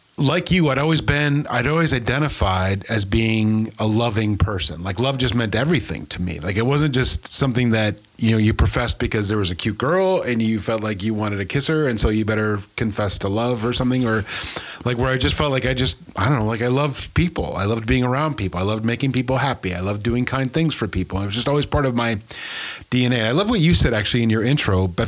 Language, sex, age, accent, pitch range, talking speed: English, male, 40-59, American, 105-140 Hz, 255 wpm